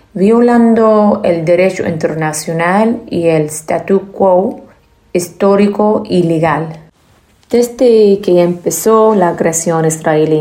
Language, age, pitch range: Spanish, 30-49, 170-205 Hz